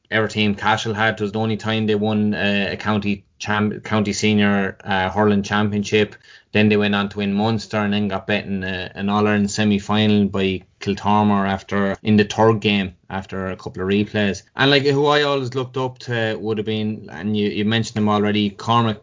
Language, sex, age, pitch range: English, male, 20-39, 105-115 Hz